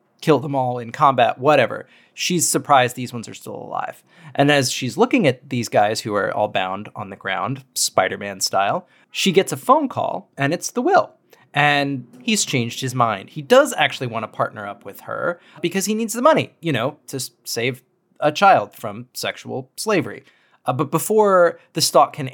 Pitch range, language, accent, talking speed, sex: 125-170 Hz, English, American, 195 wpm, male